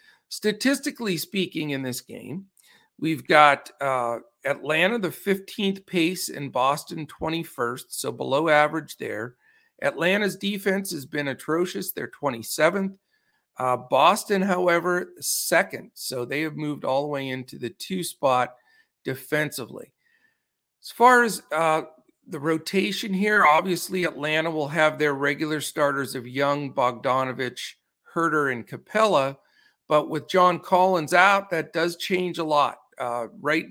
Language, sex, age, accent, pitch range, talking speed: English, male, 50-69, American, 140-180 Hz, 130 wpm